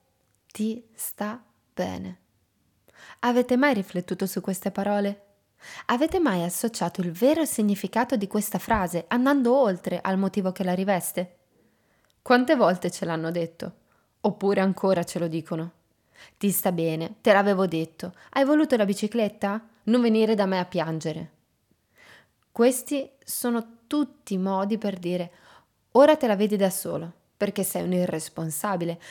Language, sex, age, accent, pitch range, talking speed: Italian, female, 20-39, native, 180-245 Hz, 140 wpm